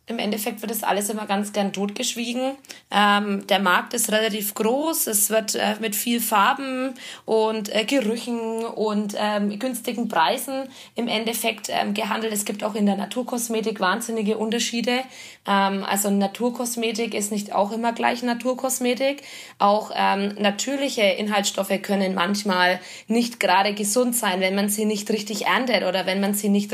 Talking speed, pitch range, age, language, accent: 155 wpm, 200-250 Hz, 20-39, German, German